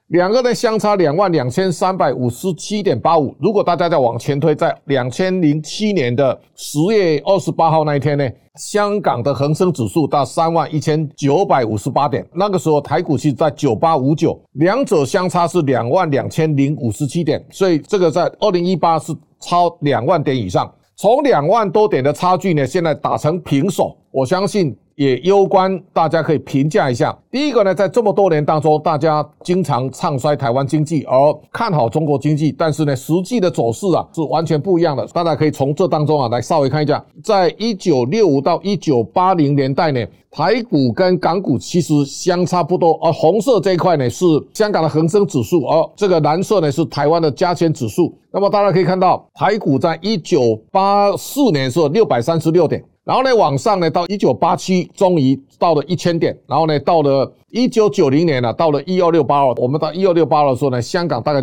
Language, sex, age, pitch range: Chinese, male, 50-69, 145-185 Hz